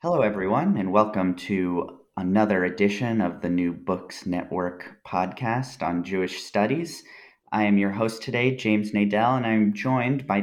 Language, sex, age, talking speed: English, male, 30-49, 155 wpm